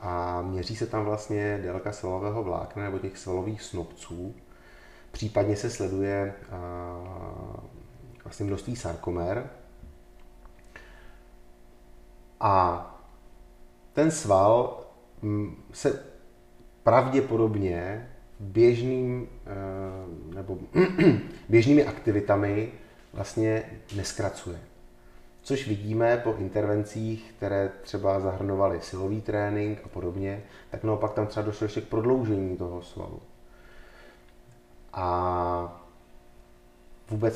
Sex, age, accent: male, 30-49, native